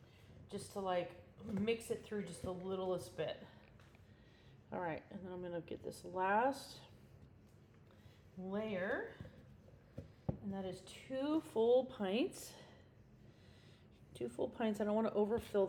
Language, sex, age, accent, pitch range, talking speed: English, female, 30-49, American, 175-210 Hz, 130 wpm